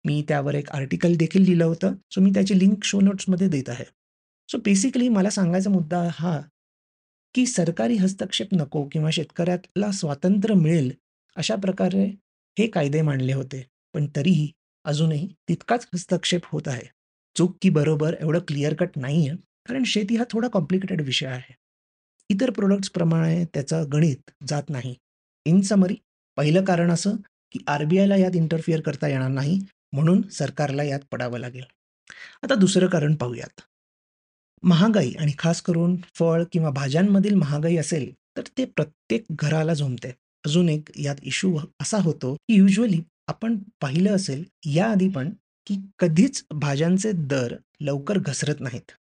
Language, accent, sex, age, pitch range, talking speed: Marathi, native, male, 30-49, 145-190 Hz, 140 wpm